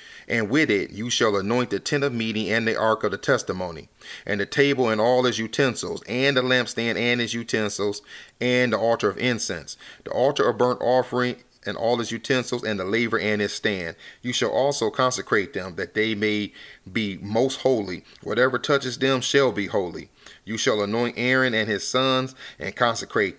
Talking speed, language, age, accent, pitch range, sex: 190 wpm, English, 40-59, American, 110-125 Hz, male